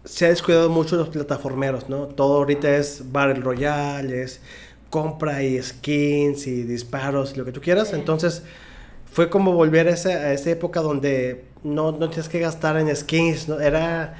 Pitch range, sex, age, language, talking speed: 140-180 Hz, male, 30-49, Spanish, 180 wpm